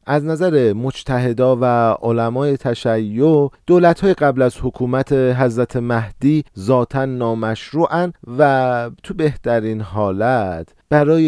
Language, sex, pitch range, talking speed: Persian, male, 105-140 Hz, 100 wpm